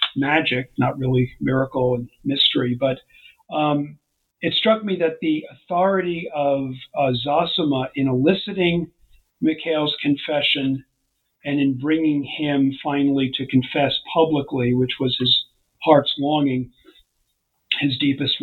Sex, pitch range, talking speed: male, 130-155 Hz, 115 wpm